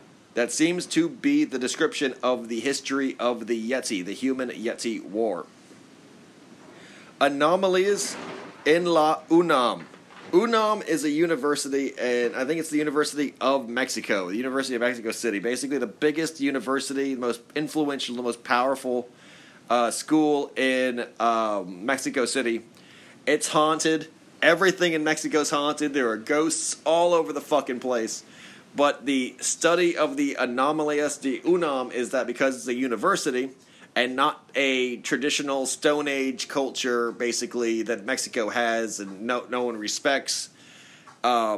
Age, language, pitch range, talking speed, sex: 30-49, English, 125-155 Hz, 140 wpm, male